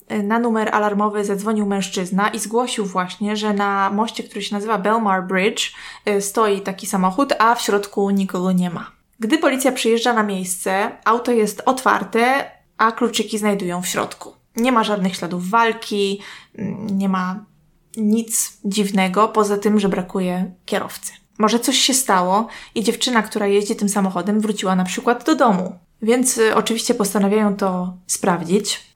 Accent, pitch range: native, 195-230 Hz